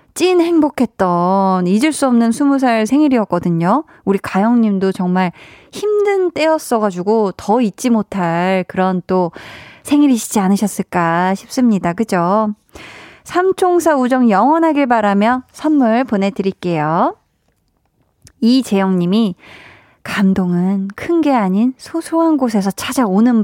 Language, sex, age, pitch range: Korean, female, 20-39, 195-265 Hz